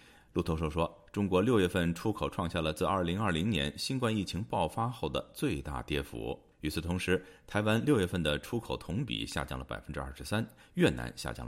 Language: Chinese